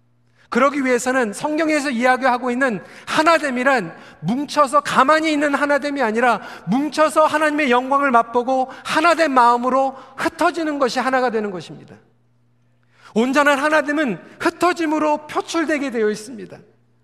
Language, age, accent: Korean, 40-59, native